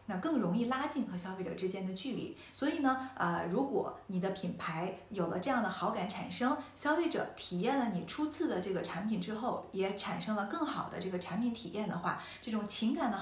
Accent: native